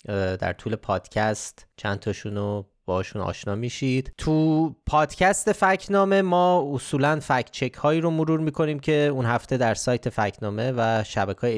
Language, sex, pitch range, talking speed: Persian, male, 110-155 Hz, 145 wpm